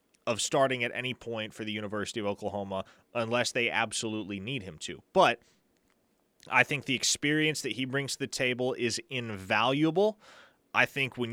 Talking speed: 170 wpm